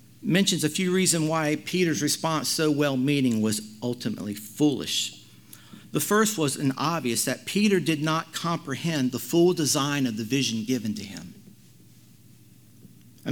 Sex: male